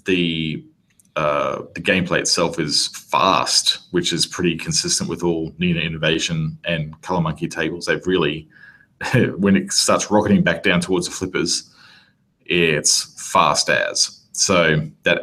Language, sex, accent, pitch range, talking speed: English, male, Australian, 80-115 Hz, 140 wpm